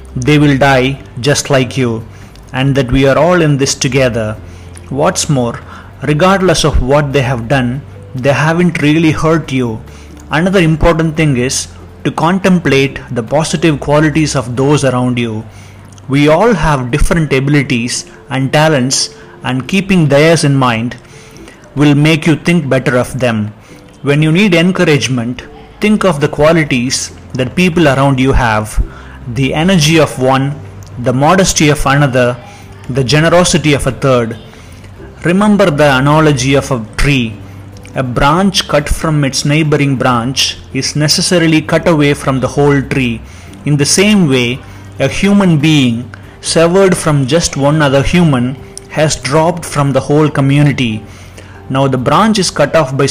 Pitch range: 120-155 Hz